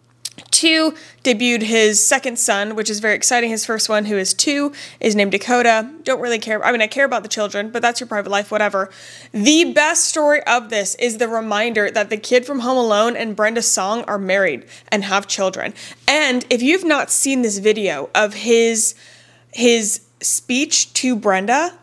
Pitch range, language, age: 215-290 Hz, English, 20-39